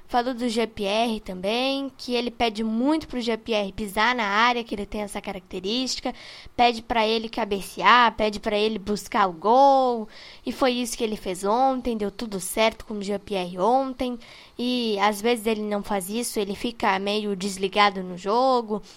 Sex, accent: female, Brazilian